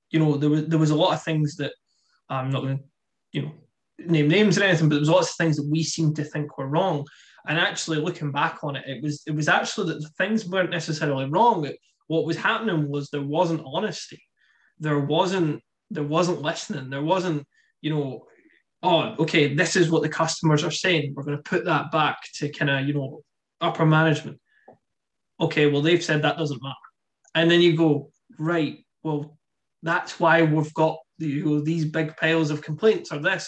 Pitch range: 145-165 Hz